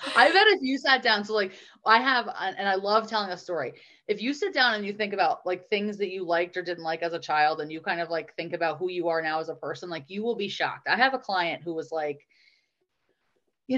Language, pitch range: English, 165-215 Hz